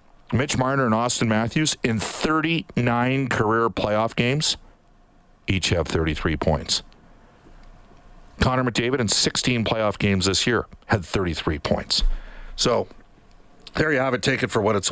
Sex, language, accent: male, English, American